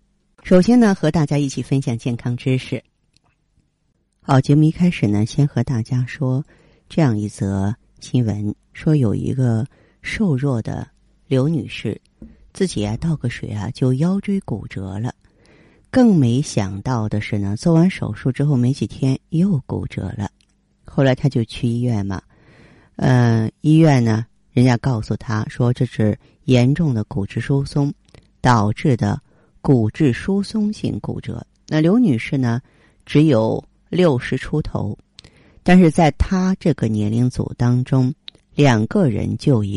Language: Chinese